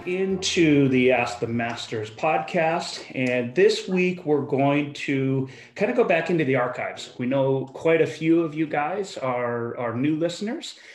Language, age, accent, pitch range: English, 30-49, American, 120-150 Hz